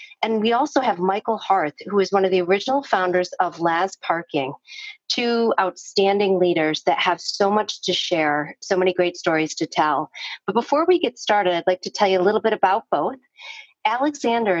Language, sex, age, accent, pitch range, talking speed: English, female, 40-59, American, 170-215 Hz, 195 wpm